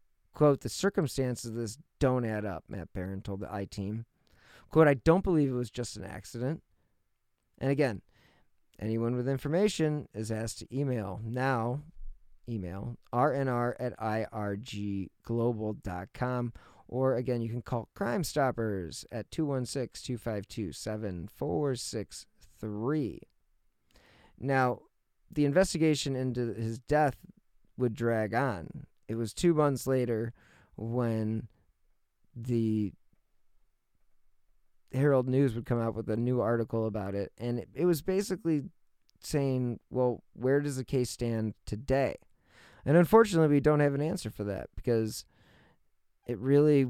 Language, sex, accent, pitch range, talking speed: English, male, American, 110-135 Hz, 125 wpm